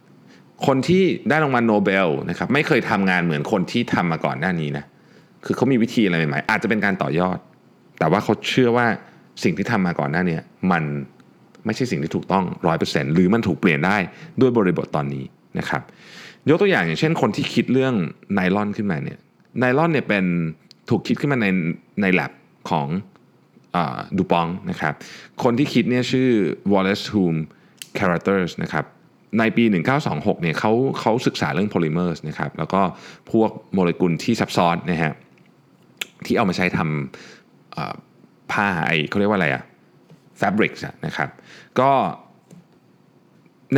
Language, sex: Thai, male